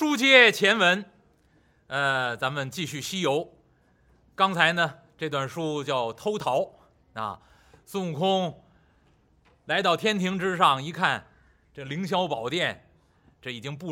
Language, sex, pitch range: Chinese, male, 135-205 Hz